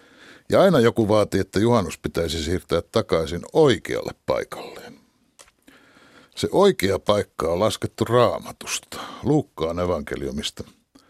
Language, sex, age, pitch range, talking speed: Finnish, male, 60-79, 95-130 Hz, 105 wpm